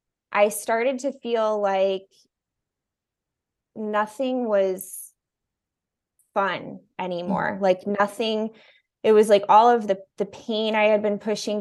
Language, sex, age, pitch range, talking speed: English, female, 20-39, 190-220 Hz, 120 wpm